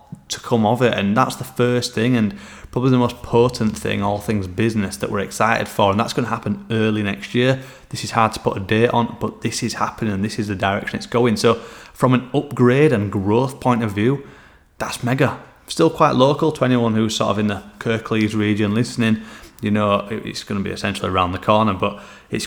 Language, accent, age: English, British, 30-49